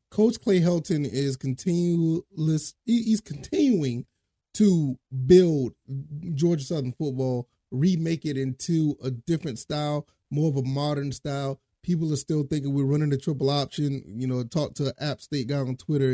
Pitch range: 135-160 Hz